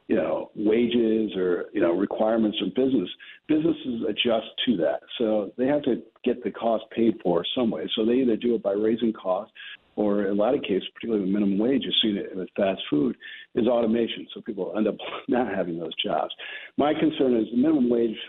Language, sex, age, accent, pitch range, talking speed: English, male, 50-69, American, 105-120 Hz, 210 wpm